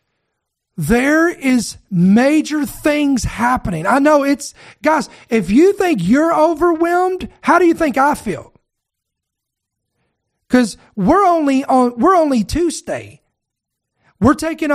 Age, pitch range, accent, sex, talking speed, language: 40-59, 220-290 Hz, American, male, 120 wpm, English